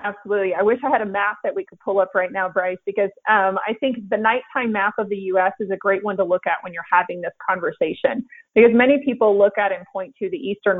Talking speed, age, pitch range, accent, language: 260 wpm, 30-49, 190-230 Hz, American, English